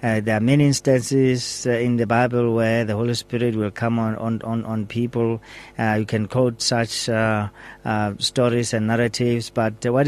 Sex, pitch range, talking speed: male, 110-130 Hz, 195 wpm